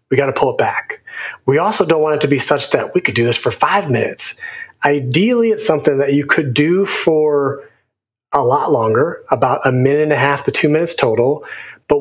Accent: American